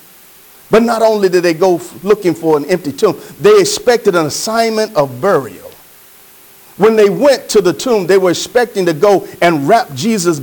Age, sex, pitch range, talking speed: 50-69, male, 175-230 Hz, 180 wpm